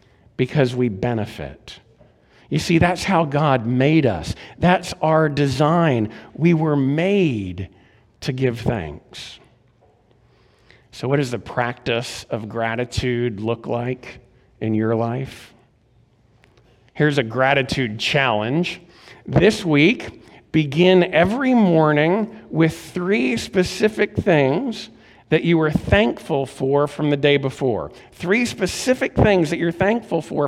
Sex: male